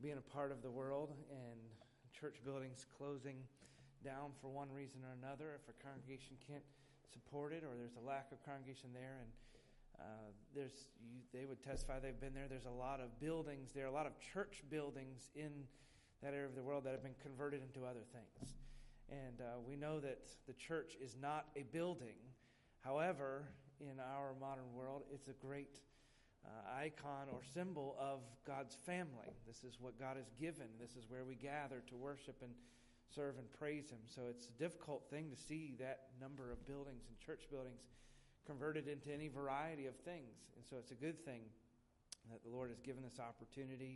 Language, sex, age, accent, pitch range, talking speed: English, male, 40-59, American, 120-140 Hz, 190 wpm